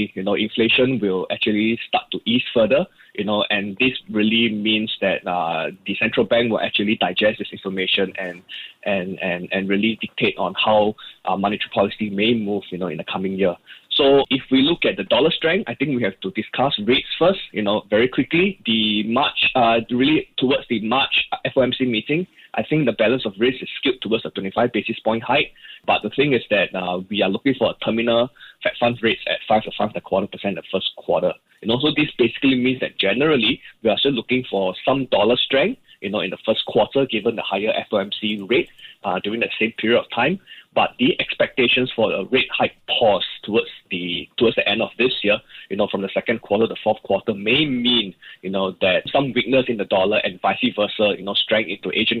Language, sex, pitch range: English, male, 105-130 Hz